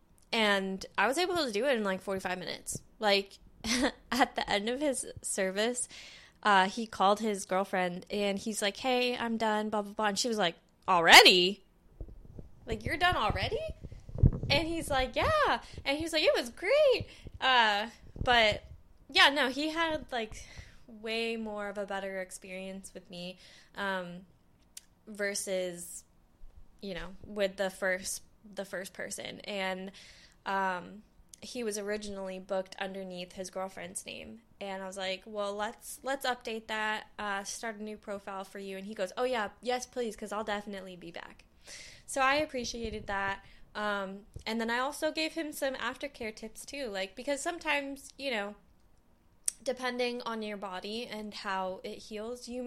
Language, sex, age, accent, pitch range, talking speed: English, female, 20-39, American, 195-245 Hz, 165 wpm